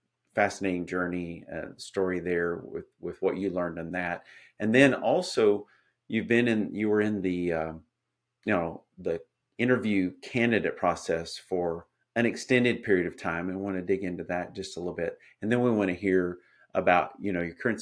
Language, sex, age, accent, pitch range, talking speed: English, male, 40-59, American, 90-110 Hz, 190 wpm